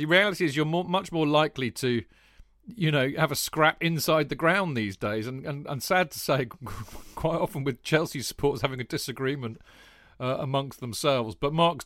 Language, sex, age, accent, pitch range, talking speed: English, male, 40-59, British, 115-145 Hz, 190 wpm